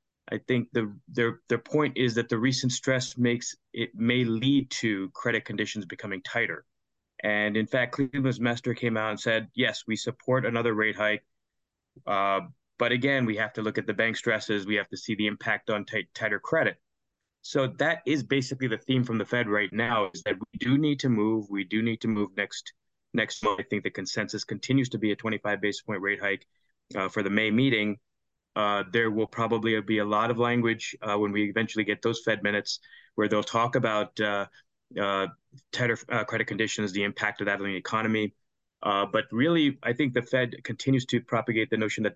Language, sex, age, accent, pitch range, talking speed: English, male, 20-39, American, 105-125 Hz, 210 wpm